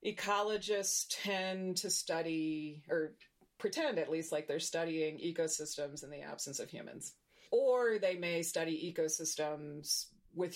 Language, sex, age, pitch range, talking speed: English, female, 30-49, 155-200 Hz, 130 wpm